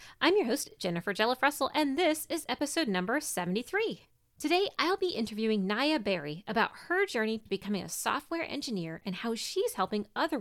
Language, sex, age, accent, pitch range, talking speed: English, female, 30-49, American, 190-290 Hz, 175 wpm